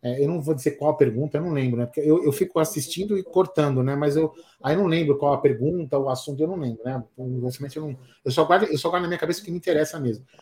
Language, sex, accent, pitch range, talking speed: Portuguese, male, Brazilian, 145-200 Hz, 295 wpm